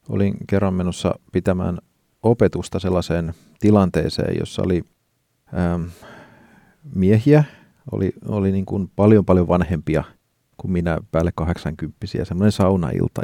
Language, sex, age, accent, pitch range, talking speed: Finnish, male, 40-59, native, 90-110 Hz, 110 wpm